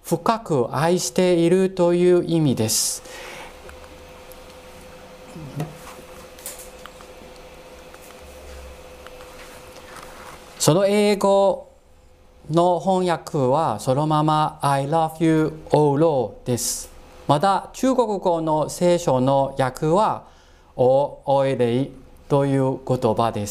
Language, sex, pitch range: Japanese, male, 130-180 Hz